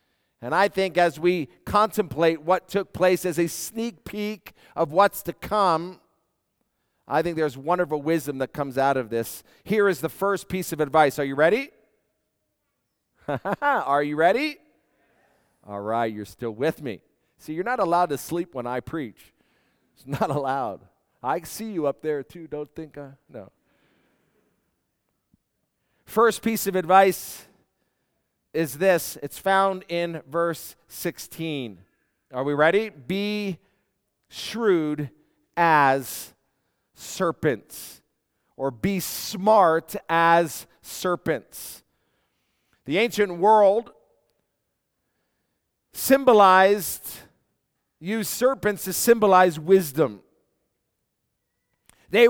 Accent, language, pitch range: American, English, 150-205 Hz